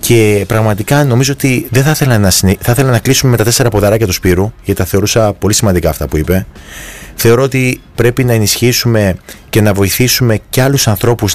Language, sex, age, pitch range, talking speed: Greek, male, 30-49, 90-125 Hz, 185 wpm